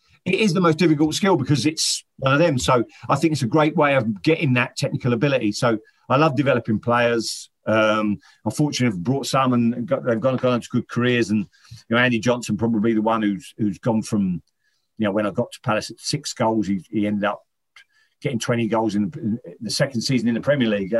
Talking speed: 225 wpm